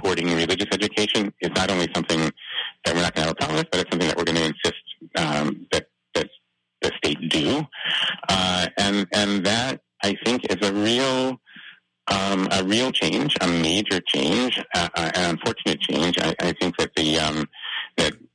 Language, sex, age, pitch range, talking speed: English, male, 30-49, 80-100 Hz, 175 wpm